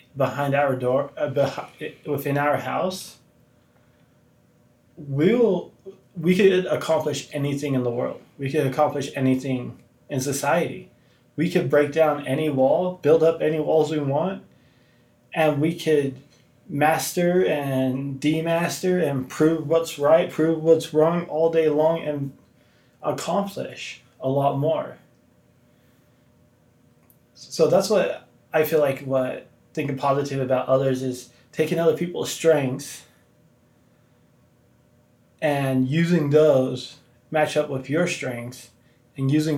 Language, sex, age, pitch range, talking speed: English, male, 20-39, 130-155 Hz, 120 wpm